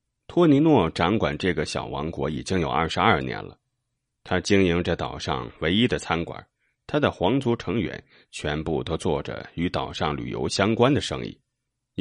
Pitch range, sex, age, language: 80-120 Hz, male, 30-49, Chinese